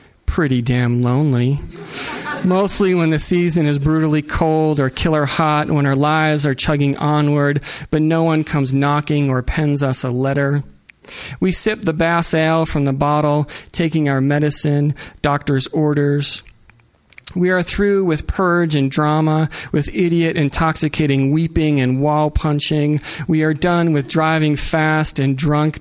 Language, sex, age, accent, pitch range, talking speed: English, male, 40-59, American, 140-160 Hz, 150 wpm